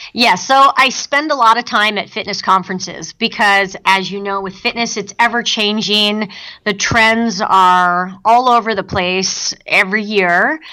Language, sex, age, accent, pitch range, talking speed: English, female, 30-49, American, 195-235 Hz, 155 wpm